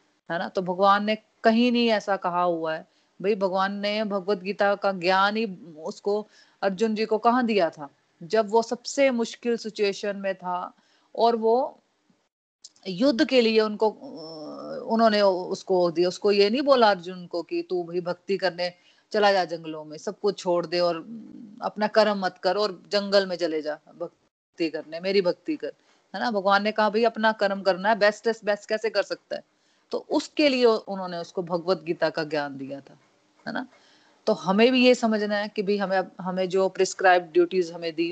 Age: 30-49